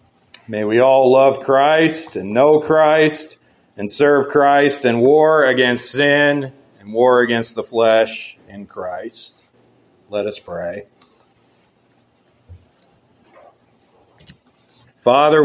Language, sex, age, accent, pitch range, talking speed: English, male, 40-59, American, 115-145 Hz, 100 wpm